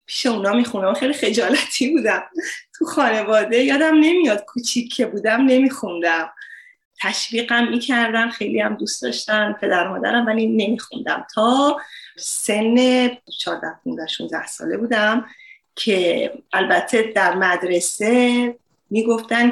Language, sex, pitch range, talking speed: Persian, female, 200-265 Hz, 100 wpm